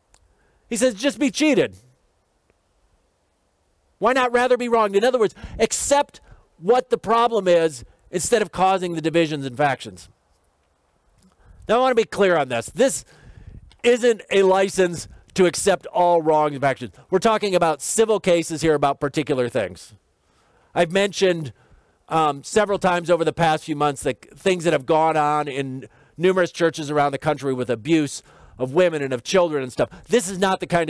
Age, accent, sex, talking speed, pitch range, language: 40-59, American, male, 170 wpm, 135-190 Hz, English